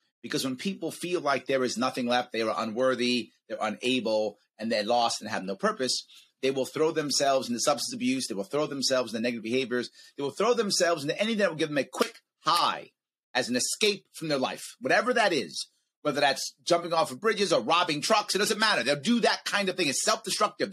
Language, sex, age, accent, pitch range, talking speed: English, male, 30-49, American, 130-205 Hz, 225 wpm